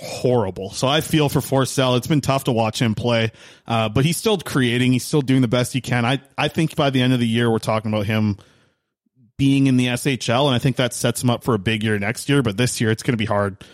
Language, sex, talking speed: English, male, 275 wpm